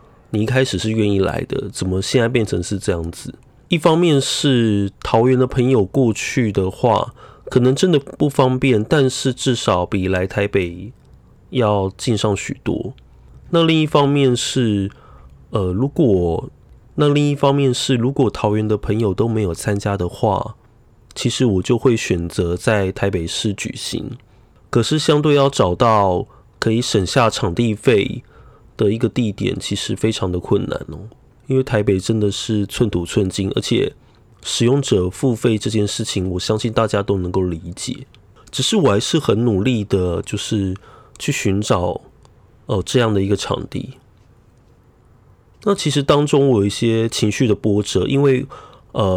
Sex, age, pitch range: male, 20-39, 100-130 Hz